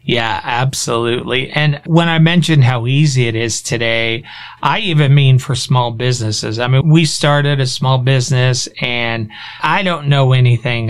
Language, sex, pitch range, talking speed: English, male, 130-160 Hz, 160 wpm